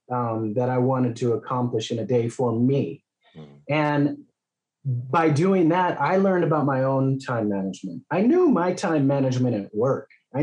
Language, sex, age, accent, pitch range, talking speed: English, male, 30-49, American, 125-165 Hz, 175 wpm